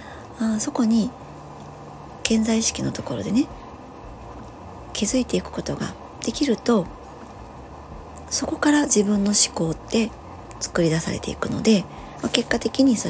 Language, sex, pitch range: Japanese, male, 145-220 Hz